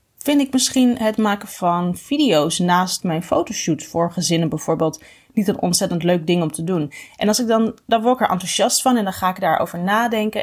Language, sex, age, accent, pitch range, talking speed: Dutch, female, 30-49, Dutch, 180-230 Hz, 215 wpm